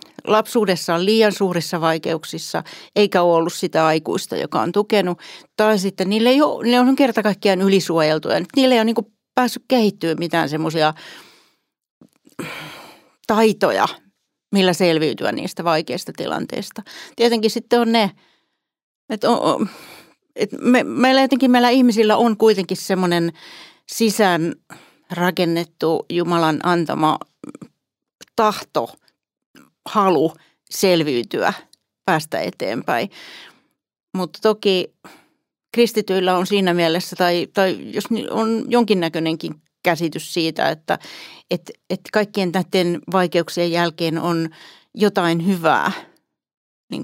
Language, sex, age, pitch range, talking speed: Finnish, female, 40-59, 170-220 Hz, 105 wpm